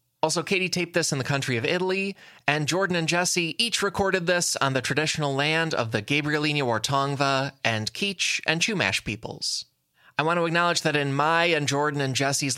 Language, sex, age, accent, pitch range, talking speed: English, male, 20-39, American, 120-165 Hz, 190 wpm